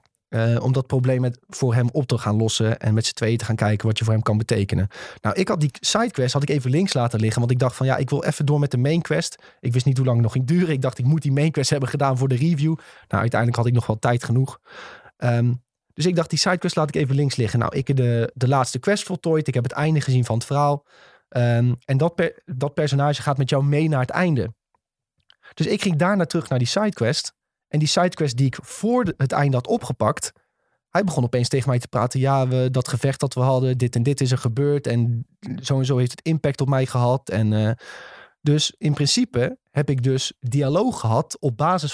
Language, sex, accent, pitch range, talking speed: Dutch, male, Dutch, 125-155 Hz, 250 wpm